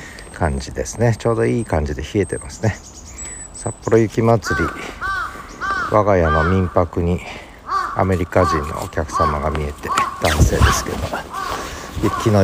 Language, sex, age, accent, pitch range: Japanese, male, 60-79, native, 75-105 Hz